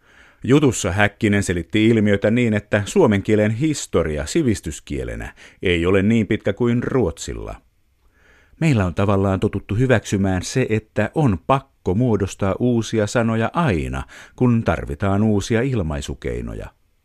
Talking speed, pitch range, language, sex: 115 wpm, 95-120 Hz, Finnish, male